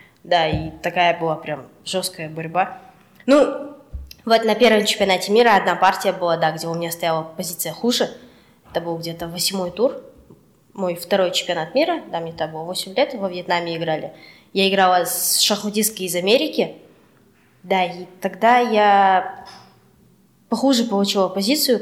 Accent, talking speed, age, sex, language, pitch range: native, 150 wpm, 20-39, female, Russian, 175-220 Hz